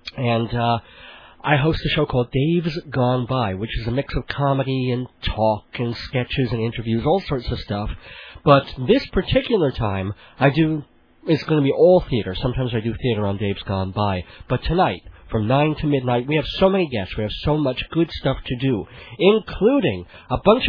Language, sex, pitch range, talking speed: English, male, 120-160 Hz, 195 wpm